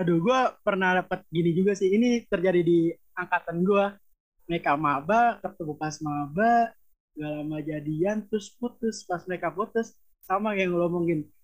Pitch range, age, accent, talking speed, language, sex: 180-225 Hz, 20-39, native, 145 wpm, Indonesian, male